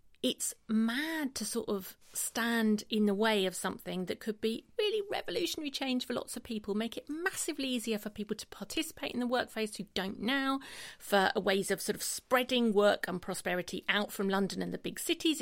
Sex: female